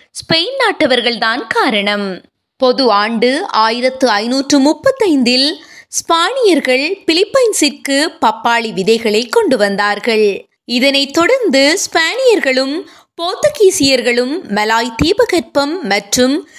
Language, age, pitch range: Tamil, 20-39, 225-355 Hz